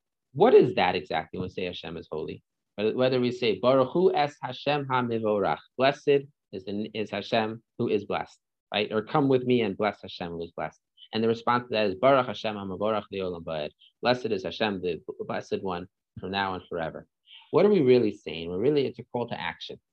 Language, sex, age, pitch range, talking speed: English, male, 30-49, 100-135 Hz, 185 wpm